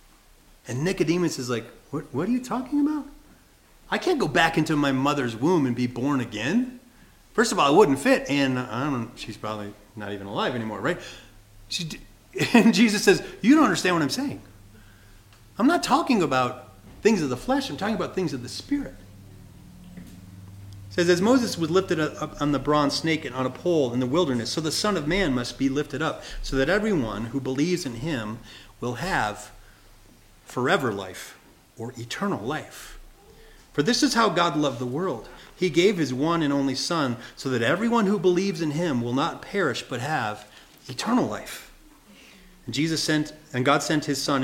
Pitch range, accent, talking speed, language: 120-180 Hz, American, 190 wpm, English